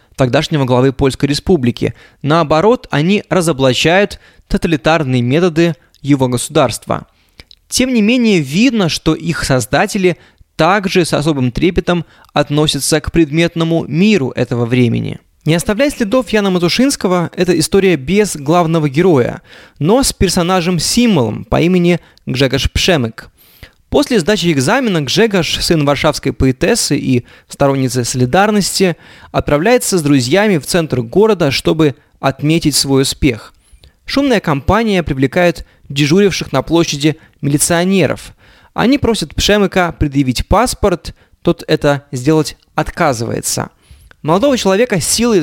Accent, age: native, 20-39